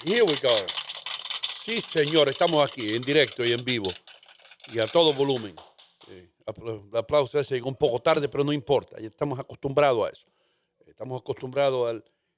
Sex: male